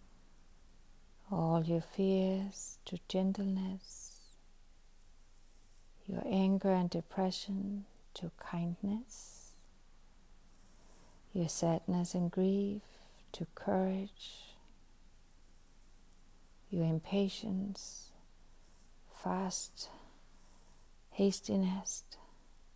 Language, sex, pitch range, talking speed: English, female, 170-195 Hz, 55 wpm